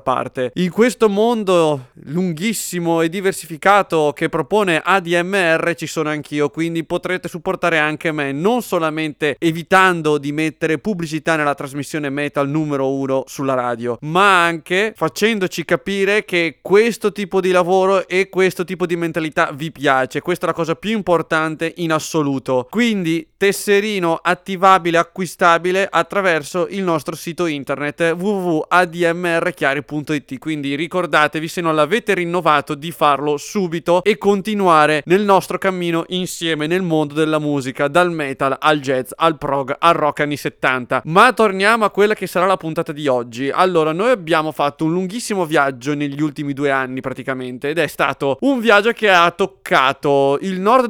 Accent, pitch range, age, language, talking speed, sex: Italian, 150-185 Hz, 30-49, English, 150 wpm, male